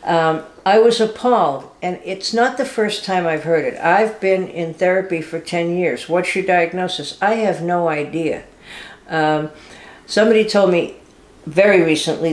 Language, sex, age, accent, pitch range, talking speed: English, female, 60-79, American, 155-185 Hz, 160 wpm